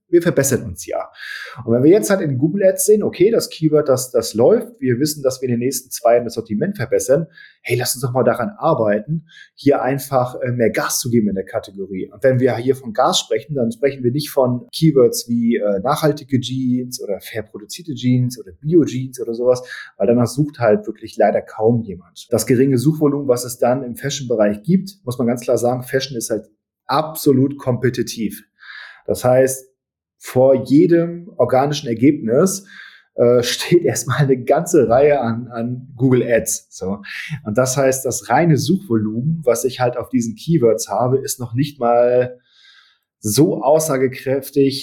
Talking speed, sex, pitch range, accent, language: 180 wpm, male, 115-145 Hz, German, German